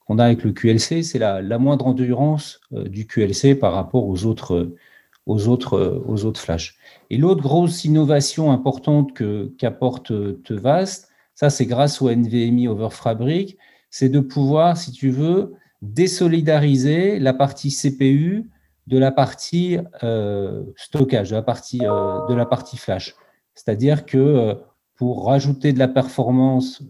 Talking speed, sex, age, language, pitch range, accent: 150 wpm, male, 50-69, French, 115-145 Hz, French